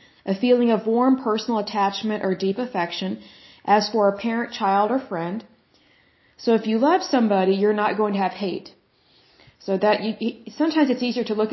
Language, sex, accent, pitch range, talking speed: Hindi, female, American, 190-230 Hz, 180 wpm